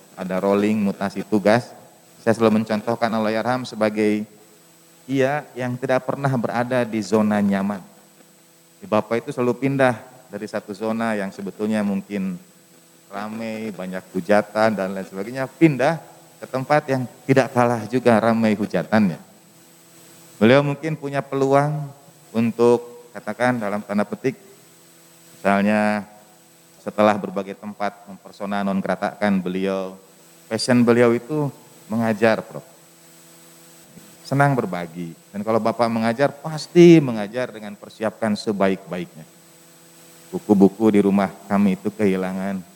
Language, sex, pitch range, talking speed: Indonesian, male, 100-130 Hz, 115 wpm